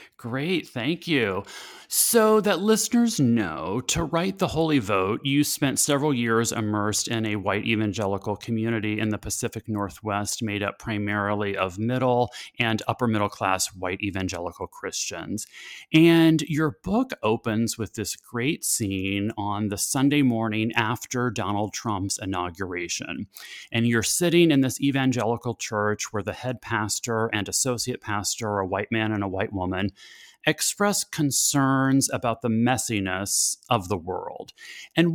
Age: 30-49